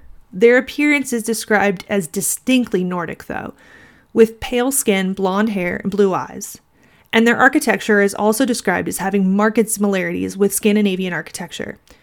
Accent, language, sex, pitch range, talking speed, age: American, English, female, 195-225 Hz, 145 wpm, 30-49